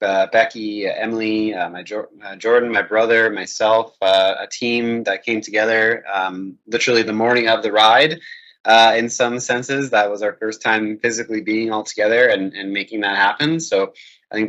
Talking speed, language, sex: 185 wpm, English, male